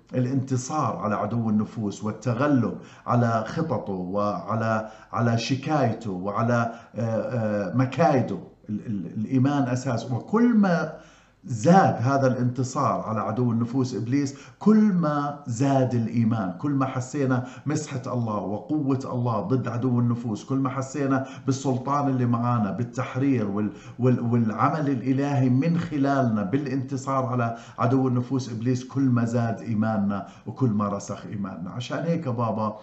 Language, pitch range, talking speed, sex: Arabic, 115-140 Hz, 115 wpm, male